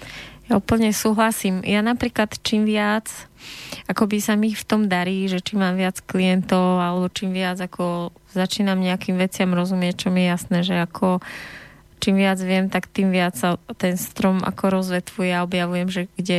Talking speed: 170 wpm